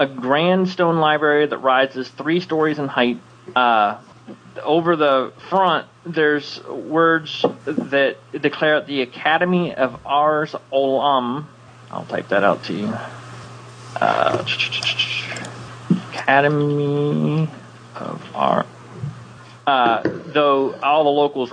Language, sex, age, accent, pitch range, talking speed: English, male, 30-49, American, 120-150 Hz, 105 wpm